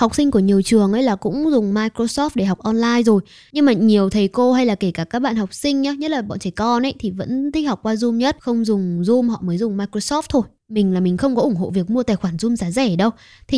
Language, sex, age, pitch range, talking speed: Vietnamese, female, 10-29, 205-275 Hz, 285 wpm